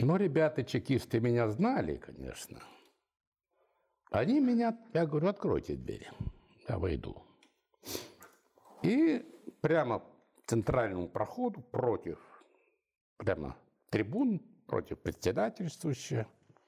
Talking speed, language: 85 wpm, Russian